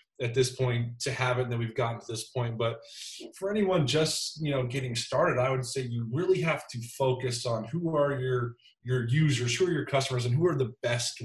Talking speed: 230 wpm